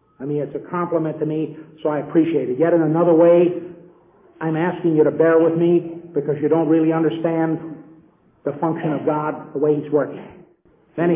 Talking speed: 195 wpm